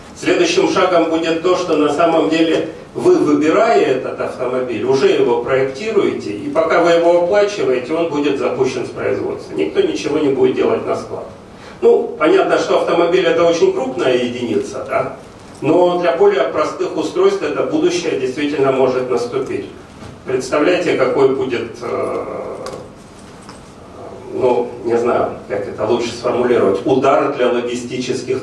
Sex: male